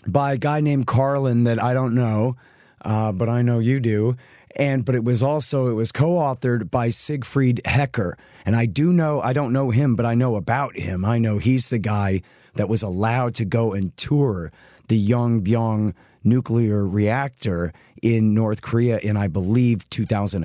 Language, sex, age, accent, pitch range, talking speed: English, male, 40-59, American, 95-120 Hz, 185 wpm